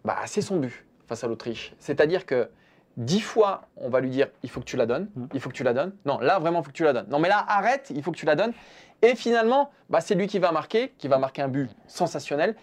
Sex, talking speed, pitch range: male, 285 wpm, 135-195 Hz